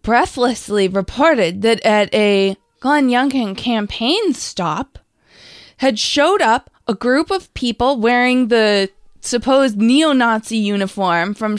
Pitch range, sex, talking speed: 195-245 Hz, female, 115 wpm